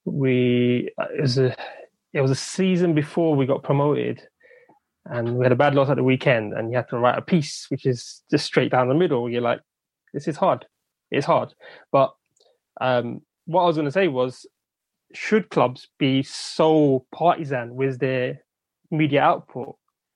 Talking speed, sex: 175 wpm, male